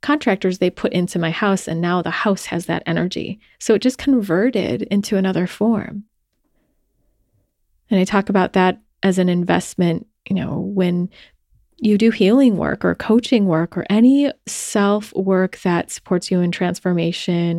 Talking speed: 160 wpm